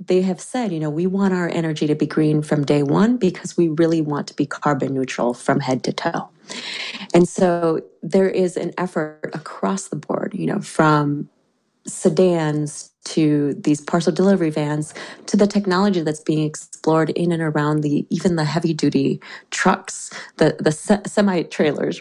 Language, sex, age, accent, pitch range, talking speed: English, female, 30-49, American, 150-185 Hz, 170 wpm